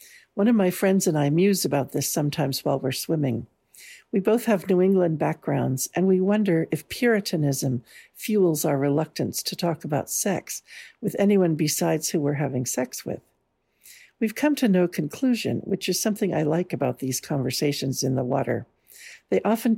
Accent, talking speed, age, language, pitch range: American, 175 wpm, 60-79, English, 140-195 Hz